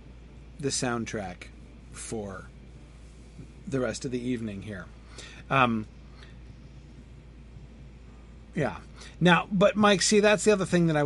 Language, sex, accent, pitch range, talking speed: English, male, American, 115-155 Hz, 115 wpm